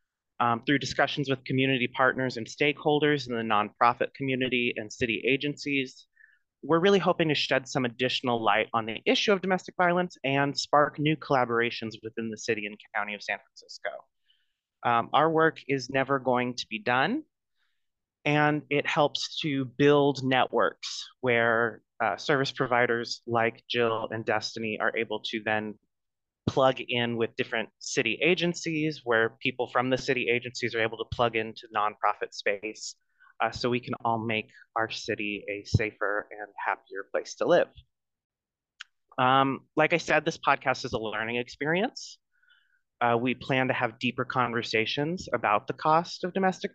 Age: 30-49